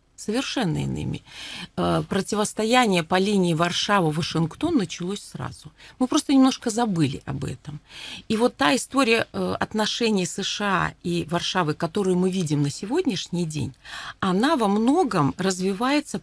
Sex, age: female, 40-59